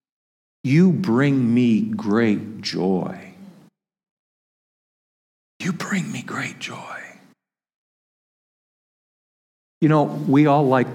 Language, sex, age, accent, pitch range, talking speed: English, male, 50-69, American, 125-180 Hz, 80 wpm